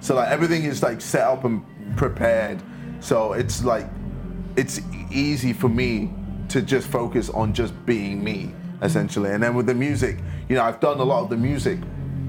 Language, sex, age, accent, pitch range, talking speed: Swedish, male, 20-39, British, 100-125 Hz, 185 wpm